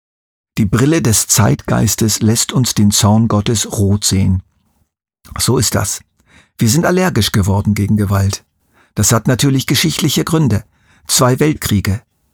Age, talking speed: 50-69, 130 wpm